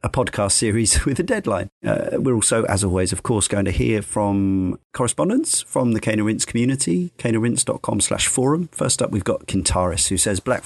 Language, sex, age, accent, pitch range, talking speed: English, male, 40-59, British, 100-120 Hz, 190 wpm